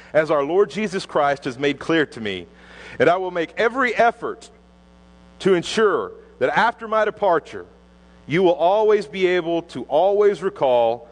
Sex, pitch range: male, 130-195 Hz